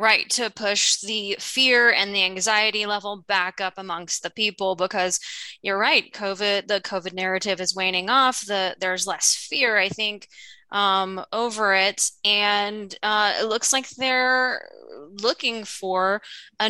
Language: English